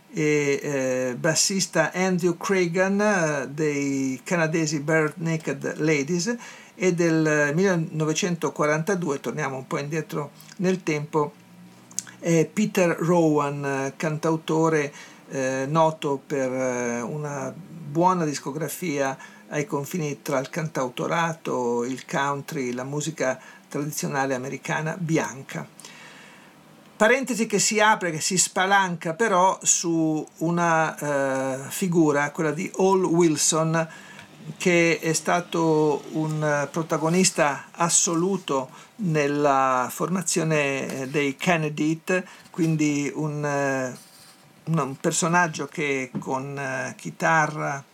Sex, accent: male, native